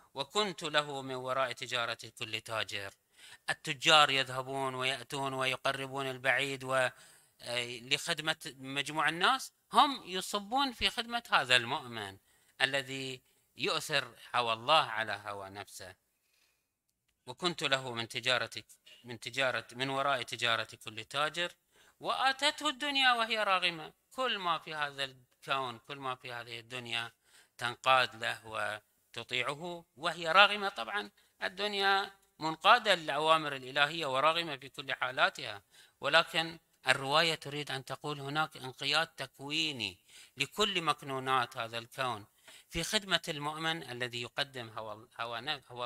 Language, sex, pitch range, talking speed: Arabic, male, 120-170 Hz, 115 wpm